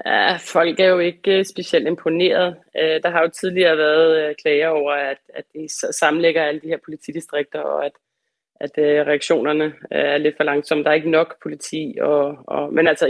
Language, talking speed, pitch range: Danish, 180 wpm, 155-180 Hz